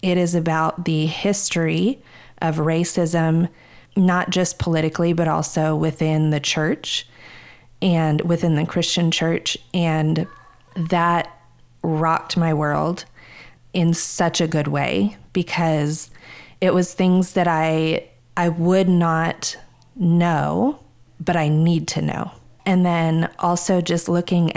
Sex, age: female, 30-49